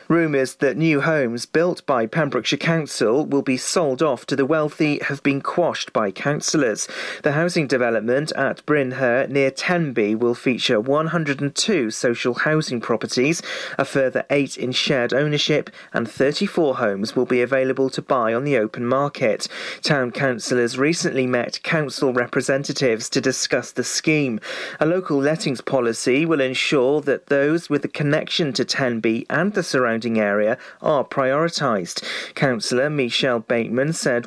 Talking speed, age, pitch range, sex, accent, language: 145 wpm, 40-59, 130-160 Hz, male, British, English